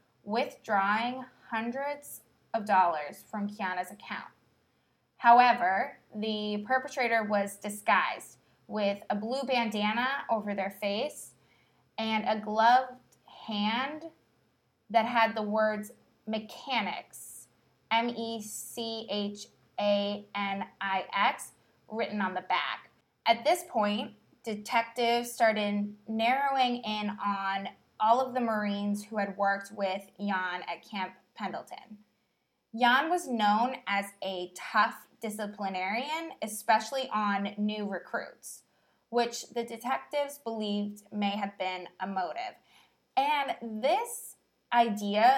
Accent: American